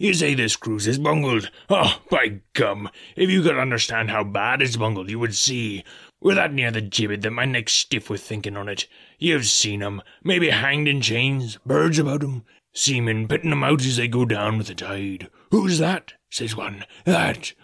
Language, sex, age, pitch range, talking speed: English, male, 20-39, 105-145 Hz, 200 wpm